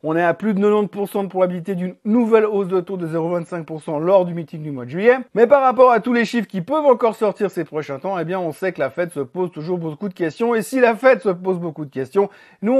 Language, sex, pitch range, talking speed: French, male, 175-230 Hz, 275 wpm